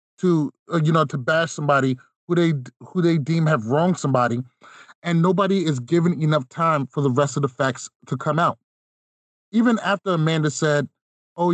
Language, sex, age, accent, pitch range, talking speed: English, male, 30-49, American, 145-175 Hz, 180 wpm